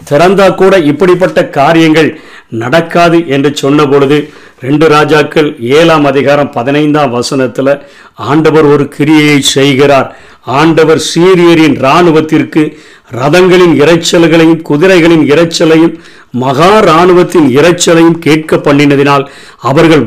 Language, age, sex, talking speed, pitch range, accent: Tamil, 50-69, male, 95 wpm, 145-170 Hz, native